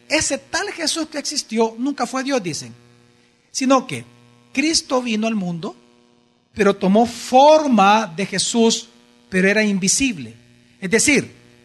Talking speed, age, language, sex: 135 wpm, 40-59, Spanish, male